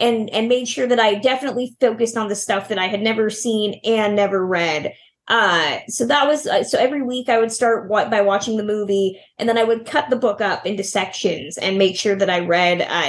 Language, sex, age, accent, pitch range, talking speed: English, female, 20-39, American, 200-235 Hz, 240 wpm